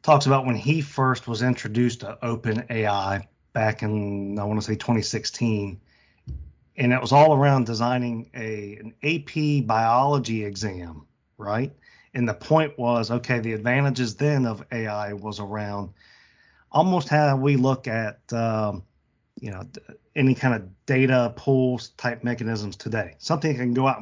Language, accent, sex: English, American, male